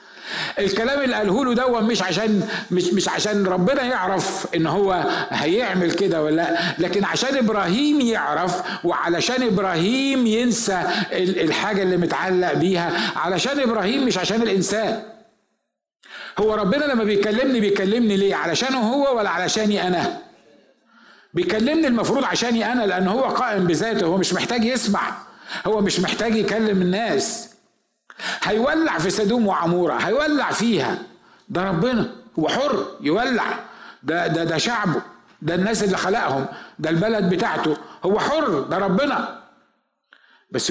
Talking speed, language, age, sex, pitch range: 130 wpm, Arabic, 60-79, male, 170-225 Hz